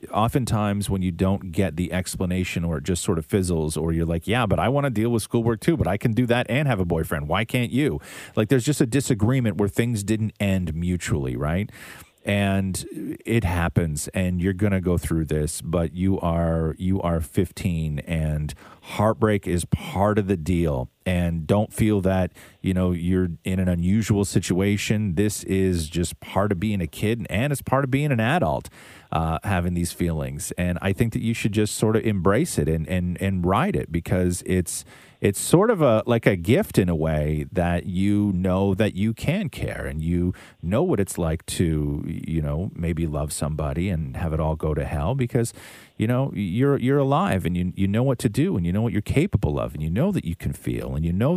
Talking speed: 215 wpm